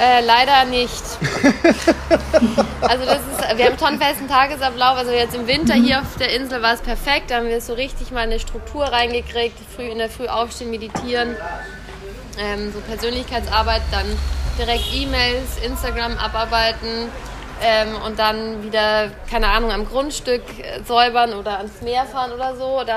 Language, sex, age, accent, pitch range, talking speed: German, female, 20-39, German, 215-245 Hz, 150 wpm